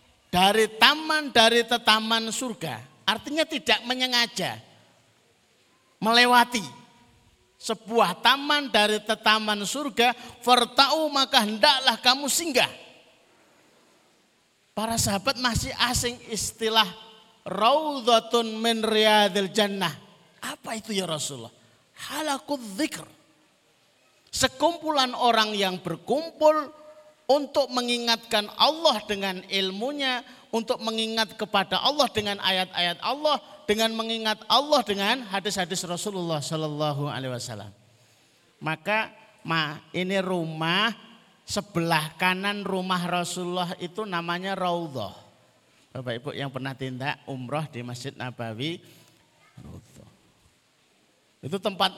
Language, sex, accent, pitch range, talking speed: Indonesian, male, native, 175-240 Hz, 90 wpm